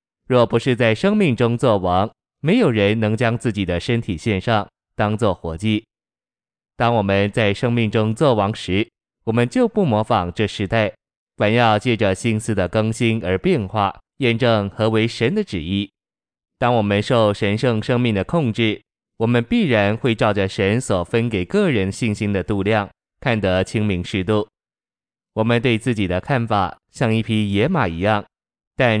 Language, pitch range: Chinese, 100-120 Hz